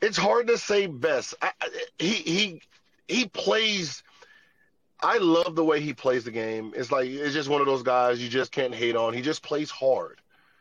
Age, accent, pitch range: 30-49, American, 130-170 Hz